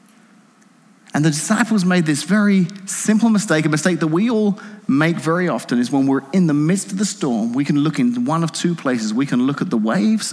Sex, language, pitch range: male, English, 165-220 Hz